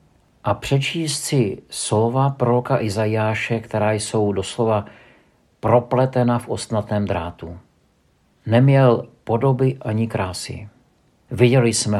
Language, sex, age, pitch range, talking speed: Czech, male, 50-69, 95-120 Hz, 95 wpm